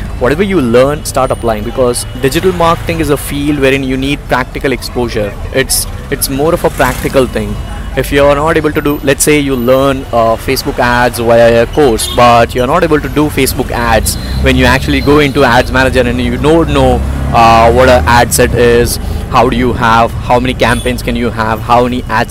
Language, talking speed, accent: English, 215 wpm, Indian